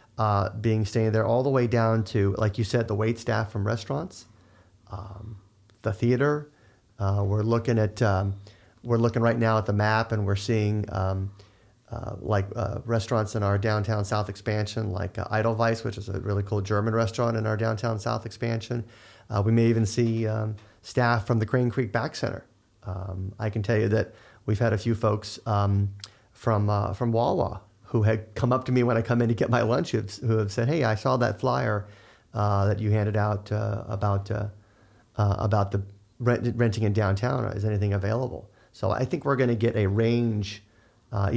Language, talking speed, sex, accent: English, 205 wpm, male, American